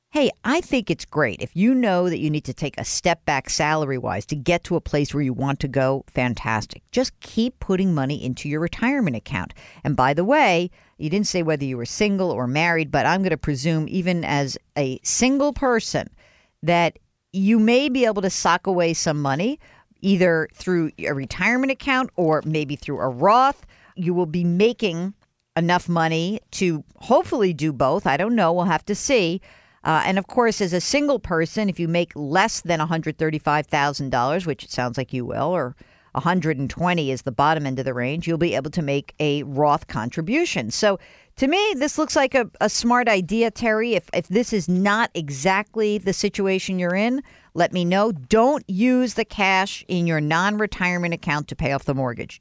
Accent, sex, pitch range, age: American, female, 150-210 Hz, 50-69